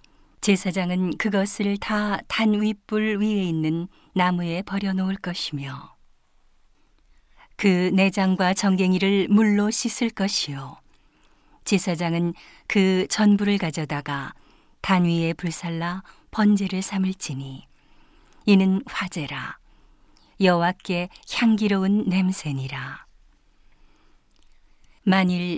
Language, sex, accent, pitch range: Korean, female, native, 170-200 Hz